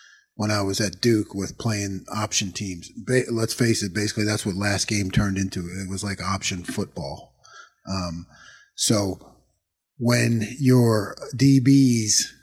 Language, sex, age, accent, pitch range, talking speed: English, male, 40-59, American, 100-125 Hz, 145 wpm